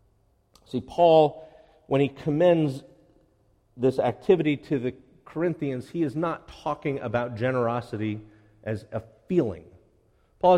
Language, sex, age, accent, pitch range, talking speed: English, male, 50-69, American, 110-145 Hz, 115 wpm